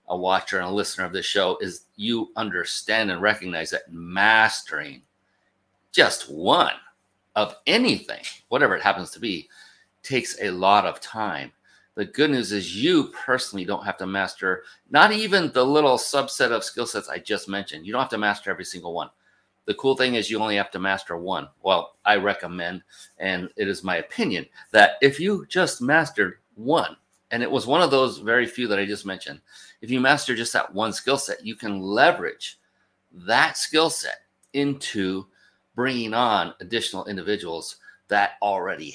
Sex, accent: male, American